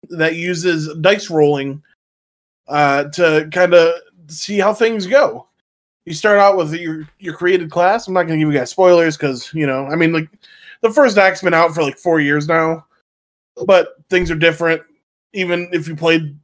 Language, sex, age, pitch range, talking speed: English, male, 20-39, 150-180 Hz, 190 wpm